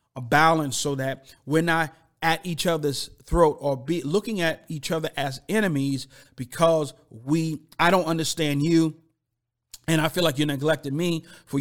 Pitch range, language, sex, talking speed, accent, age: 140-170 Hz, English, male, 165 wpm, American, 40-59